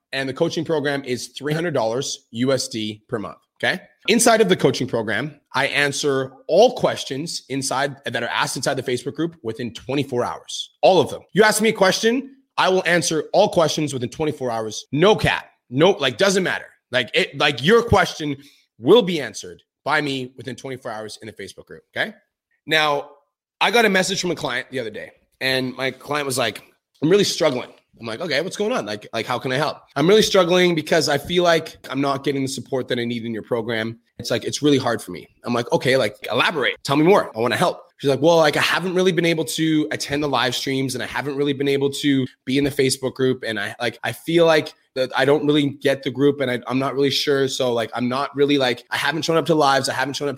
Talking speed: 235 wpm